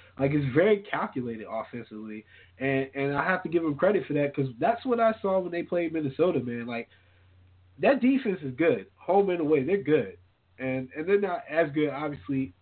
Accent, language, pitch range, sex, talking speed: American, English, 120-165 Hz, male, 200 wpm